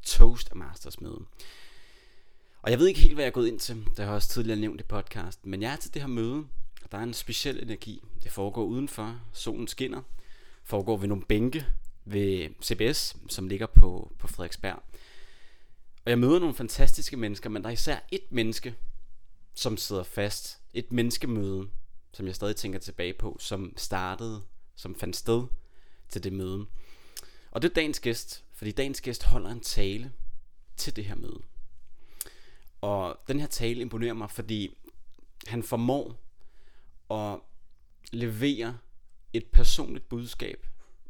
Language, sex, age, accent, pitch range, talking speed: Danish, male, 30-49, native, 100-120 Hz, 160 wpm